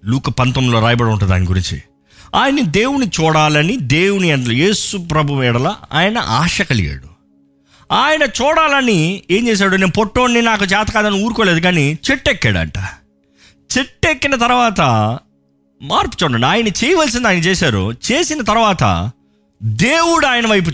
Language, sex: Telugu, male